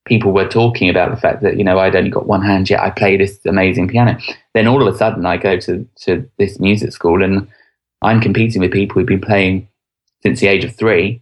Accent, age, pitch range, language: British, 20-39, 100-120 Hz, English